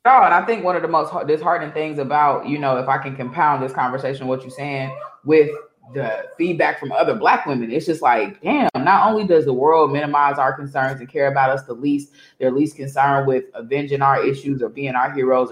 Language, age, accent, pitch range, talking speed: English, 20-39, American, 135-160 Hz, 220 wpm